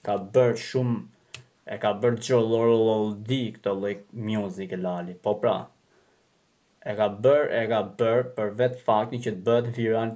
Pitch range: 120-160 Hz